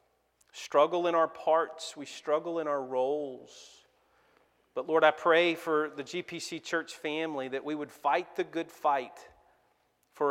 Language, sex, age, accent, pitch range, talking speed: English, male, 40-59, American, 135-165 Hz, 150 wpm